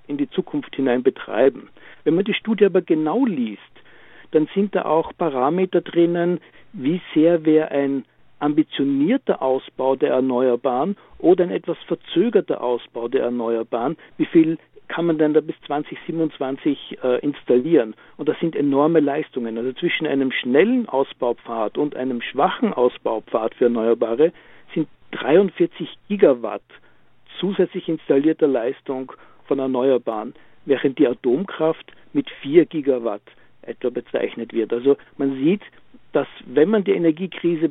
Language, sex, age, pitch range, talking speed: German, male, 60-79, 135-180 Hz, 135 wpm